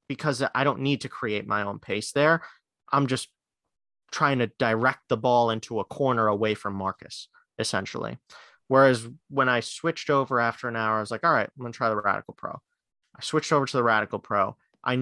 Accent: American